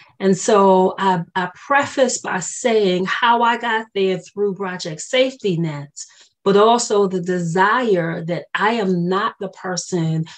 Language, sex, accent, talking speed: English, female, American, 145 wpm